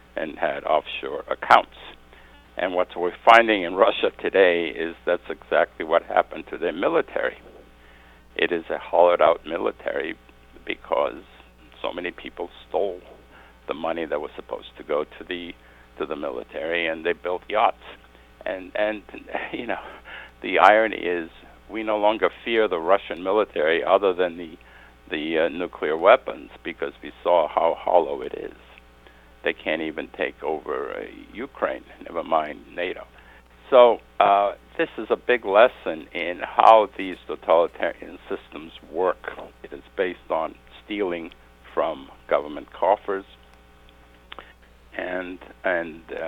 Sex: male